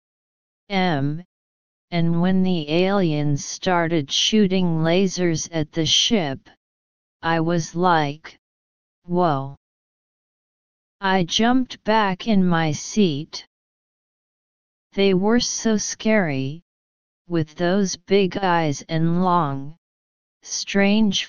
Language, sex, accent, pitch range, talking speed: English, female, American, 150-190 Hz, 90 wpm